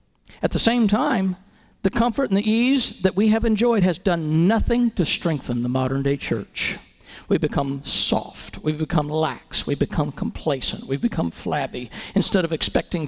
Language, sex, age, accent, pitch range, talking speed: English, male, 50-69, American, 155-210 Hz, 165 wpm